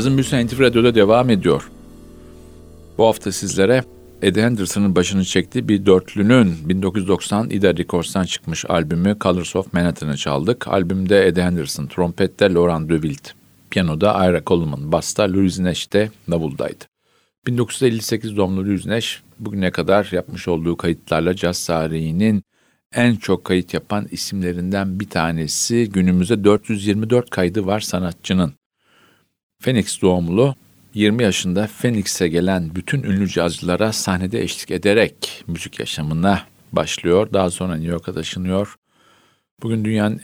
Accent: native